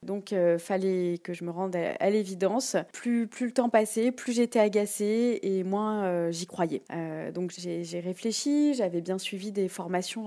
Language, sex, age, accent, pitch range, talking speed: French, female, 20-39, French, 200-255 Hz, 195 wpm